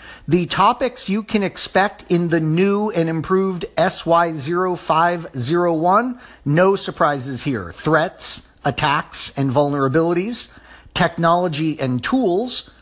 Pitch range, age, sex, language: 145-185 Hz, 50-69, male, English